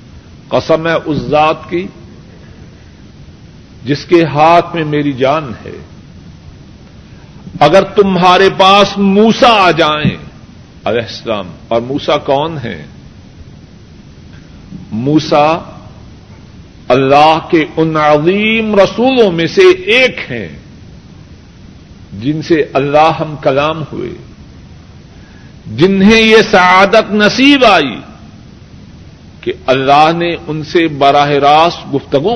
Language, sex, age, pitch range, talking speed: Urdu, male, 50-69, 140-205 Hz, 100 wpm